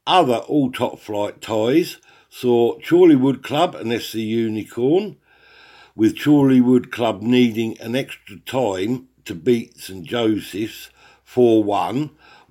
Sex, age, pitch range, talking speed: male, 60-79, 105-150 Hz, 105 wpm